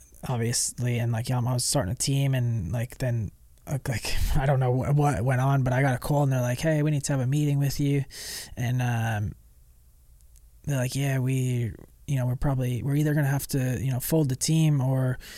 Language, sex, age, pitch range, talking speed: English, male, 20-39, 120-135 Hz, 220 wpm